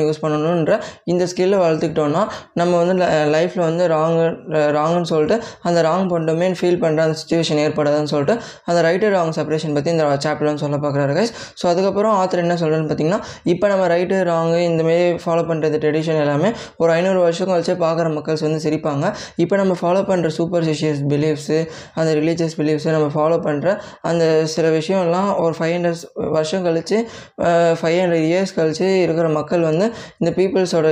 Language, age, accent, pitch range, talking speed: Tamil, 20-39, native, 155-180 Hz, 35 wpm